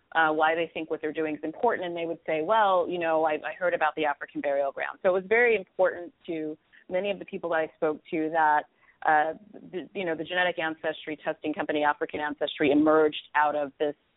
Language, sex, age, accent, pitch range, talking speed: English, female, 30-49, American, 155-180 Hz, 225 wpm